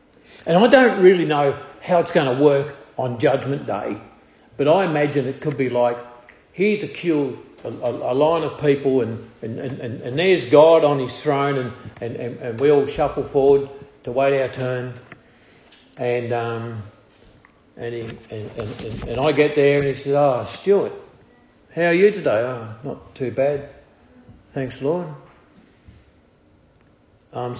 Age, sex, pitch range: 50-69, male, 120-155 Hz